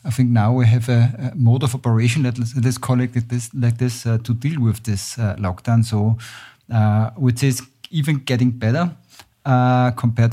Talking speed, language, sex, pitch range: 180 wpm, German, male, 115-125 Hz